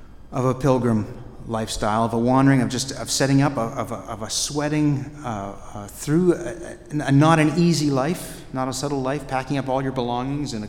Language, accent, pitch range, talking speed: English, American, 110-145 Hz, 215 wpm